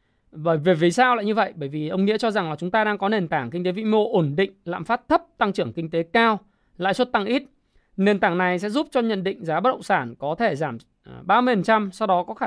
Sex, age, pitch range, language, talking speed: male, 20-39, 155-210 Hz, Vietnamese, 280 wpm